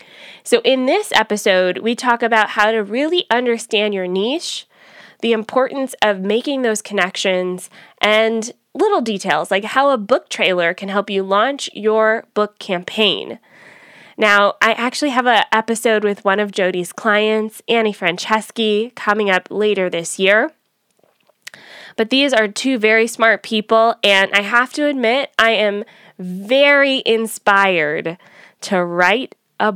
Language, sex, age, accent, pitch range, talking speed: English, female, 20-39, American, 200-240 Hz, 145 wpm